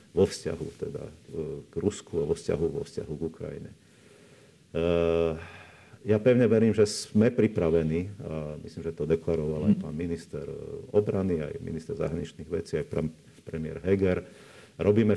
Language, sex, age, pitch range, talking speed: Slovak, male, 50-69, 80-95 Hz, 130 wpm